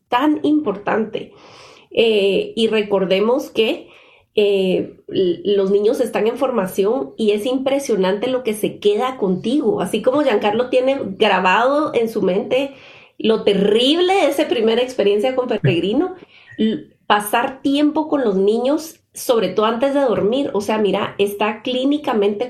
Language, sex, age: Spanish, female, 30-49